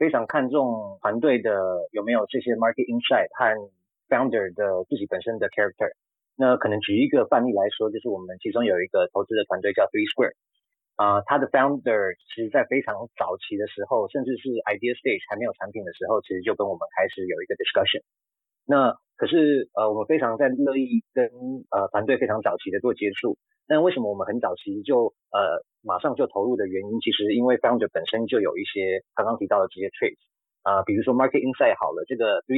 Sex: male